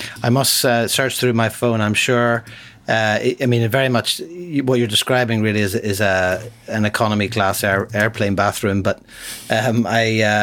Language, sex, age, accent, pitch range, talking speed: English, male, 30-49, Irish, 105-130 Hz, 175 wpm